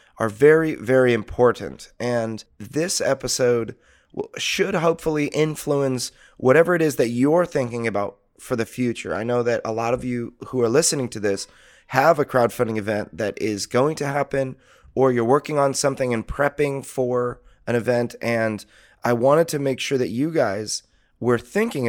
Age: 30-49